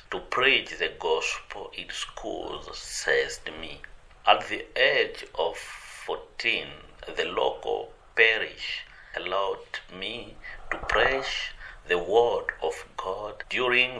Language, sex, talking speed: English, male, 105 wpm